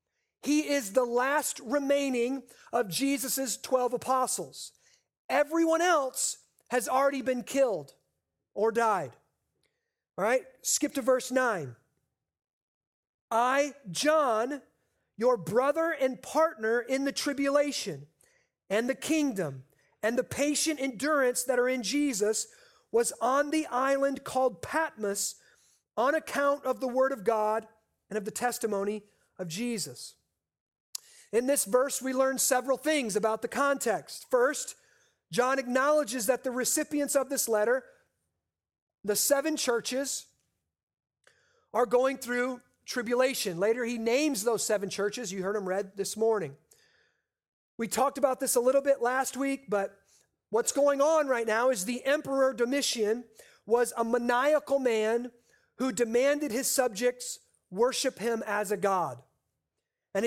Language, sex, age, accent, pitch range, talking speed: English, male, 40-59, American, 230-280 Hz, 130 wpm